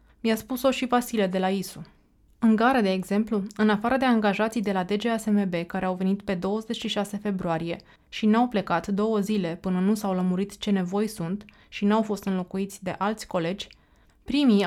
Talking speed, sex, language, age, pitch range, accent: 180 wpm, female, Romanian, 20-39, 195-220 Hz, native